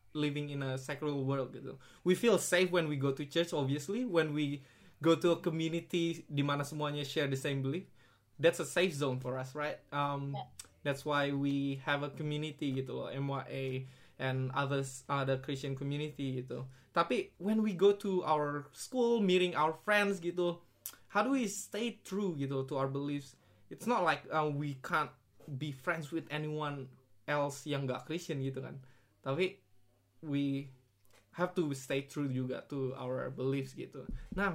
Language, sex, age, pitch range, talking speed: Indonesian, male, 20-39, 130-160 Hz, 170 wpm